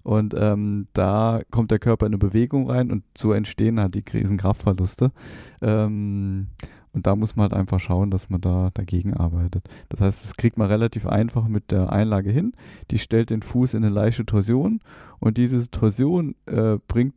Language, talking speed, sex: German, 180 wpm, male